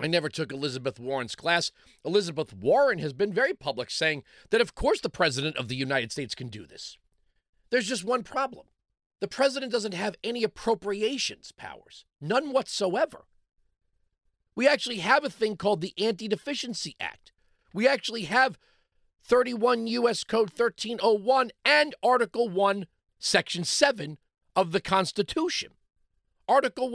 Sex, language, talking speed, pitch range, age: male, English, 140 wpm, 160-240 Hz, 40-59